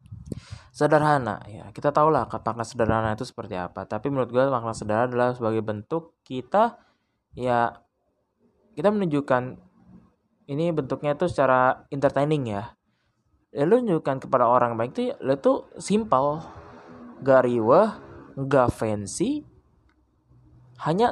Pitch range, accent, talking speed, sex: 115-175 Hz, native, 120 wpm, male